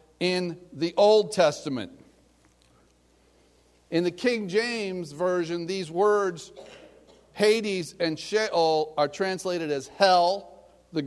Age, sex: 50-69, male